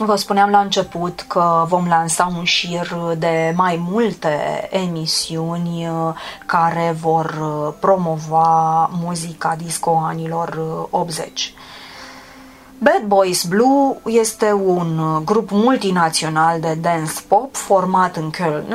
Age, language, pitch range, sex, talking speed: 20-39, Romanian, 165-225 Hz, female, 105 wpm